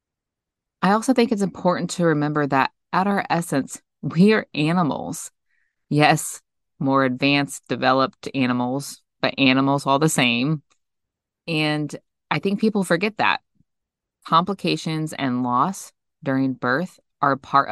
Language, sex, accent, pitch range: English, female, American, 130-160 Hz